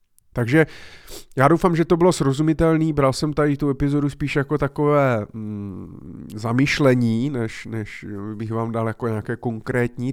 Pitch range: 115-135 Hz